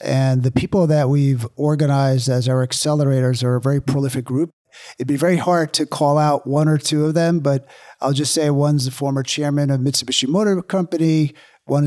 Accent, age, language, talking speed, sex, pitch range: American, 50-69, English, 195 wpm, male, 135-155 Hz